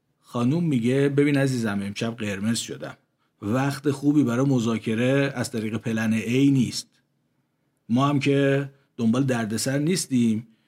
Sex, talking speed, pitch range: male, 125 wpm, 115-140 Hz